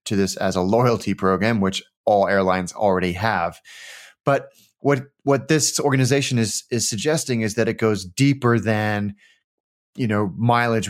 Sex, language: male, English